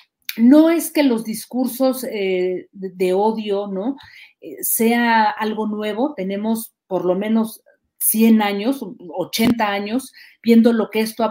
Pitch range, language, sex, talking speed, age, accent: 190-240 Hz, Spanish, female, 125 wpm, 40-59, Mexican